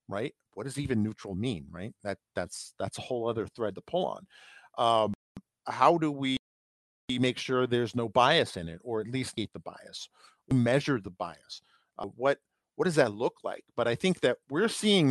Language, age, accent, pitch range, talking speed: English, 50-69, American, 105-140 Hz, 205 wpm